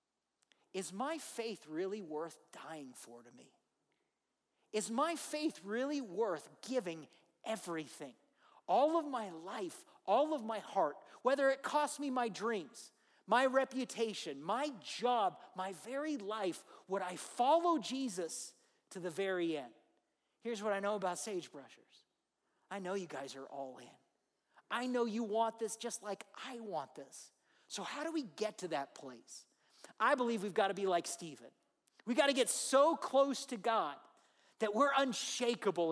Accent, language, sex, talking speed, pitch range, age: American, English, male, 160 wpm, 195-275 Hz, 50-69